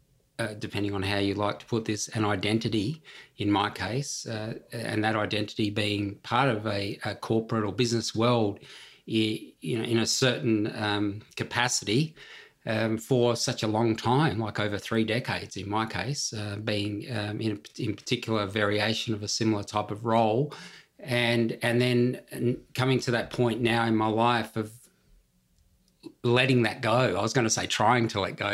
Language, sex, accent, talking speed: English, male, Australian, 180 wpm